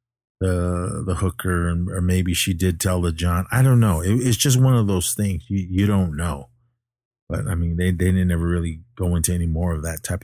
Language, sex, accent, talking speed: English, male, American, 230 wpm